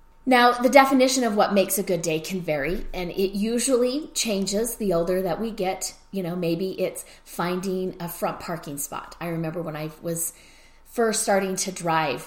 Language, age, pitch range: English, 30-49, 160-200 Hz